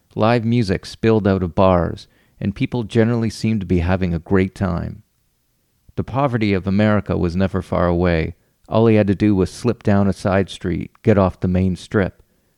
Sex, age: male, 40-59